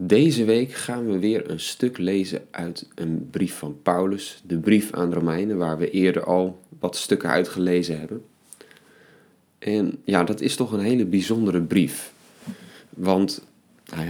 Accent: Dutch